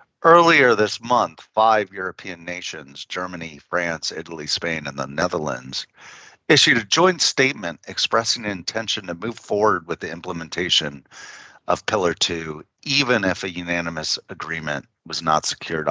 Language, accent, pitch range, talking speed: English, American, 80-105 Hz, 145 wpm